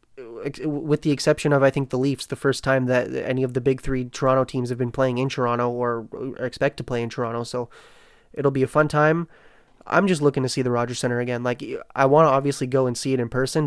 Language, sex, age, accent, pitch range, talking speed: English, male, 20-39, American, 125-150 Hz, 245 wpm